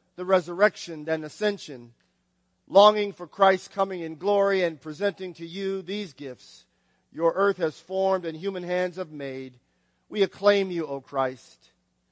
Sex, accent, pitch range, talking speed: male, American, 150-190 Hz, 150 wpm